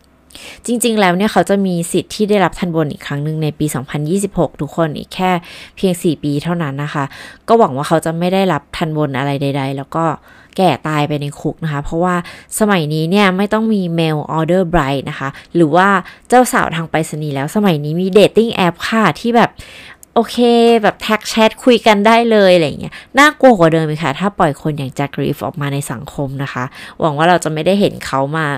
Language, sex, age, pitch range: Thai, female, 20-39, 145-190 Hz